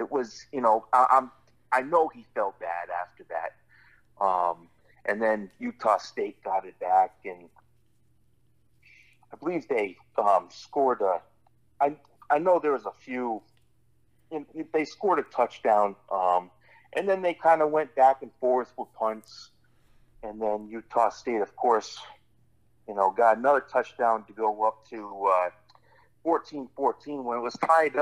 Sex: male